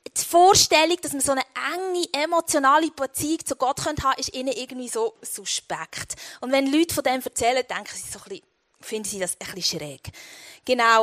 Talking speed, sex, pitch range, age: 190 wpm, female, 225-300 Hz, 20-39